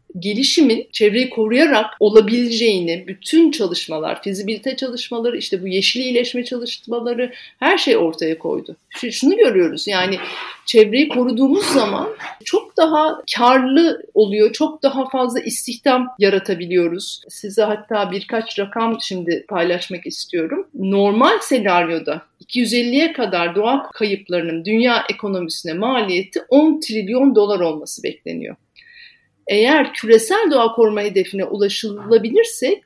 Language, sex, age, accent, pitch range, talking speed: Turkish, female, 50-69, native, 205-275 Hz, 110 wpm